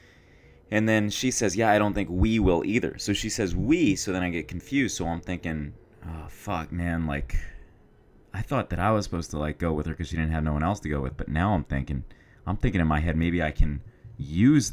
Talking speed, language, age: 250 wpm, English, 30-49